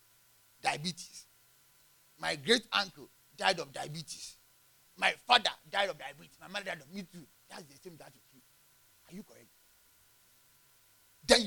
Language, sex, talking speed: English, male, 140 wpm